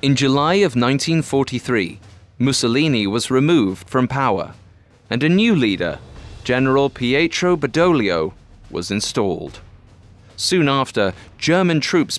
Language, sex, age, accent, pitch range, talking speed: English, male, 30-49, British, 95-145 Hz, 110 wpm